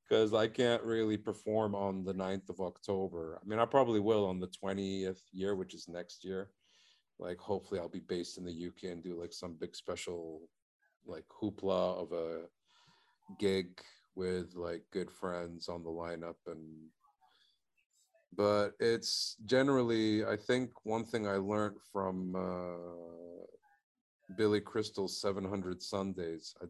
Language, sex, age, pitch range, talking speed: English, male, 40-59, 85-100 Hz, 150 wpm